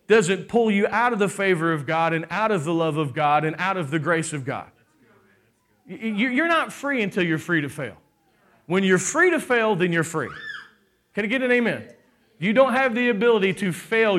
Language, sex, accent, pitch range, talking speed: English, male, American, 155-200 Hz, 215 wpm